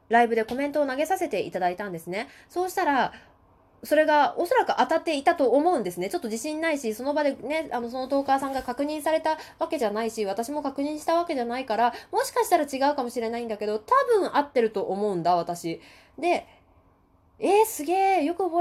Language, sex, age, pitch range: Japanese, female, 20-39, 215-305 Hz